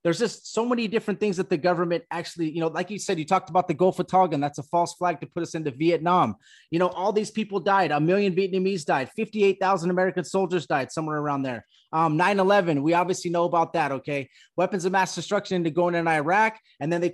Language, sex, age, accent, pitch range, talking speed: English, male, 30-49, American, 155-190 Hz, 240 wpm